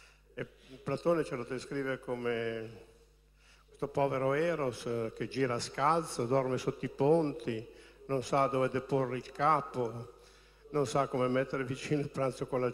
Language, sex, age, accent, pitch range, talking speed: Italian, male, 60-79, native, 115-145 Hz, 140 wpm